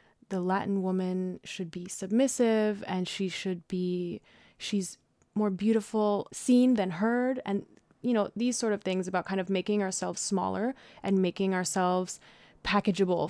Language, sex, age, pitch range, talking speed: English, female, 20-39, 180-205 Hz, 150 wpm